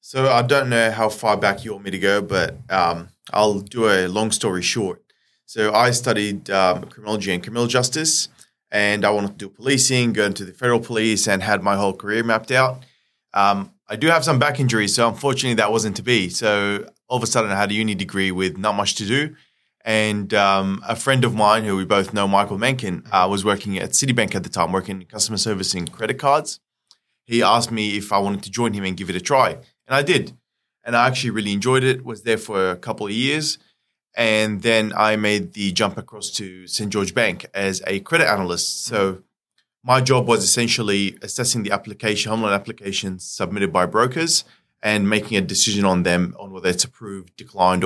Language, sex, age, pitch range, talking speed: English, male, 20-39, 100-115 Hz, 215 wpm